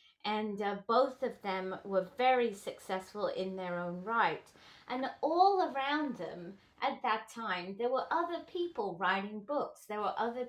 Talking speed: 160 wpm